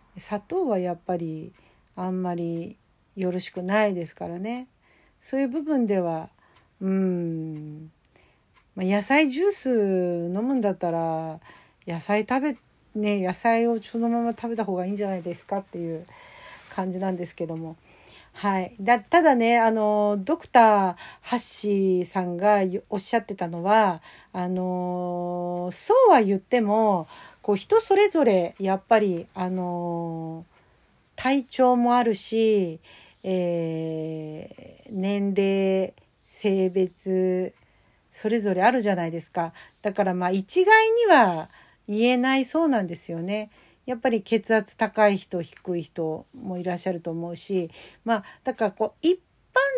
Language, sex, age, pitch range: Japanese, female, 50-69, 175-235 Hz